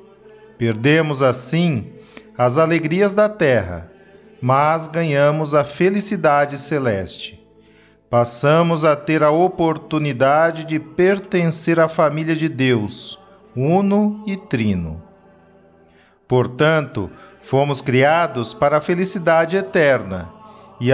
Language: Portuguese